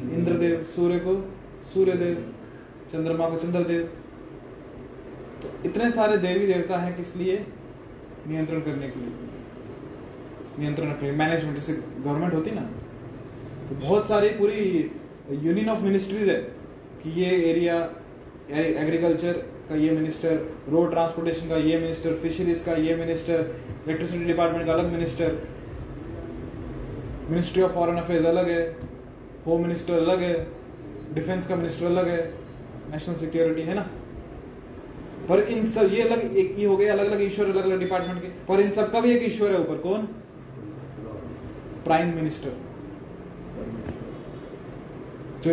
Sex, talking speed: male, 135 wpm